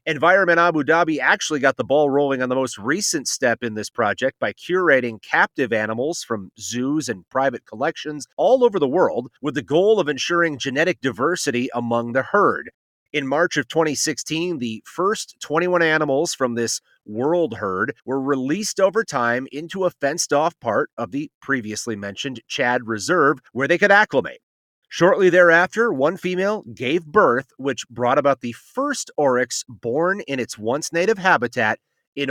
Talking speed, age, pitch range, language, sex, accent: 160 wpm, 30-49, 125-175 Hz, English, male, American